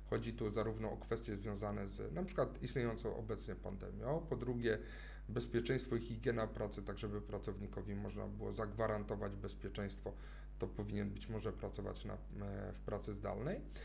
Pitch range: 110-145 Hz